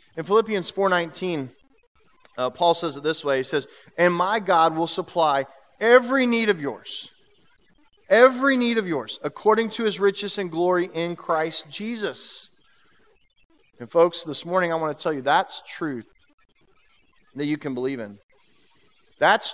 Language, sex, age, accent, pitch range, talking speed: English, male, 40-59, American, 150-205 Hz, 150 wpm